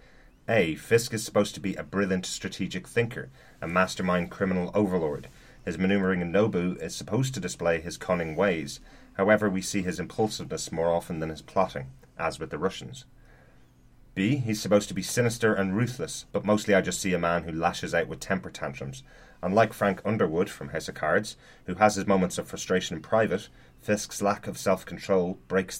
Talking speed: 185 wpm